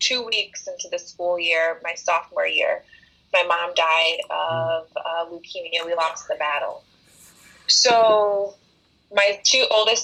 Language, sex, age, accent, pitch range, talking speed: English, female, 20-39, American, 170-215 Hz, 135 wpm